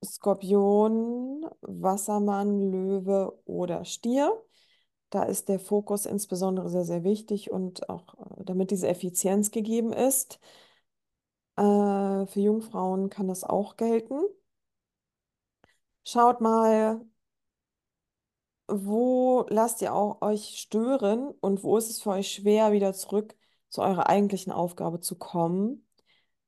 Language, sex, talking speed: German, female, 110 wpm